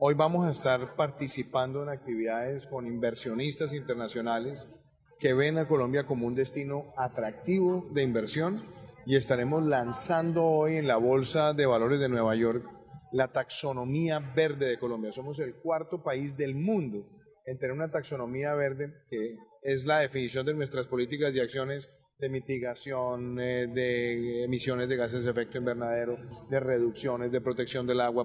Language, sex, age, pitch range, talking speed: Spanish, male, 30-49, 125-150 Hz, 155 wpm